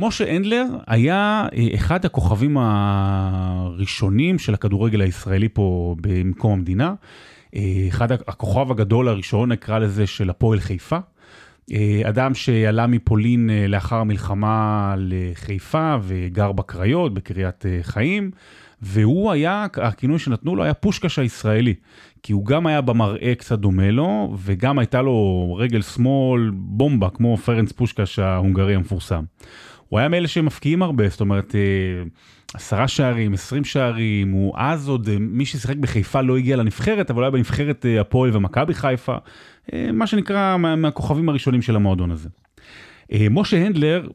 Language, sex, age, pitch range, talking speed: Hebrew, male, 30-49, 100-135 Hz, 125 wpm